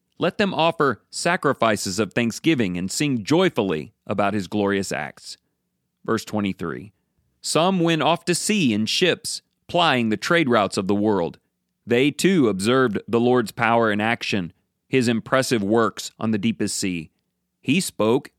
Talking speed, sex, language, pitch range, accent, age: 150 wpm, male, English, 105-140 Hz, American, 40-59